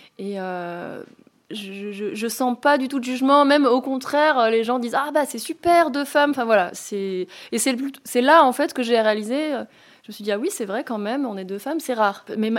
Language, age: French, 20-39